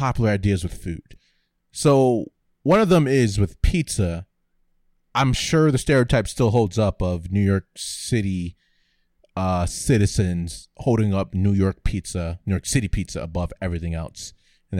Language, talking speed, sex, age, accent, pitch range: English, 150 wpm, male, 30-49, American, 90-120 Hz